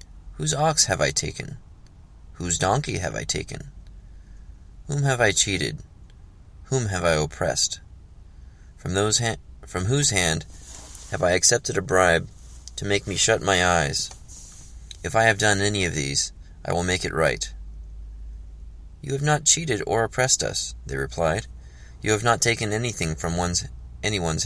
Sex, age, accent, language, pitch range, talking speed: male, 30-49, American, English, 75-95 Hz, 150 wpm